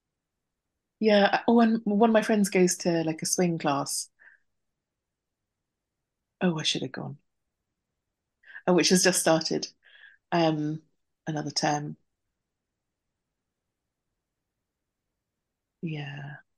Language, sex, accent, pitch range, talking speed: English, female, British, 145-185 Hz, 100 wpm